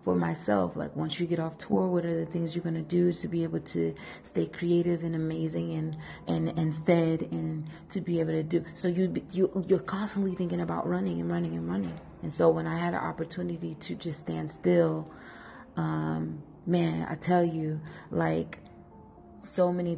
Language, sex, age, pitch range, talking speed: English, female, 30-49, 150-175 Hz, 190 wpm